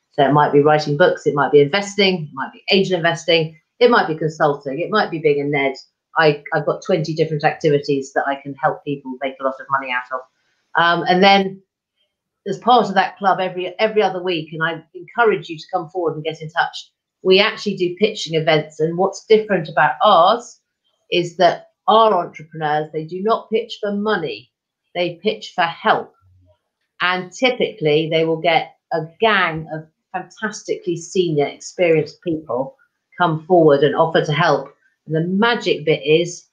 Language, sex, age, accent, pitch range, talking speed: English, female, 40-59, British, 150-190 Hz, 185 wpm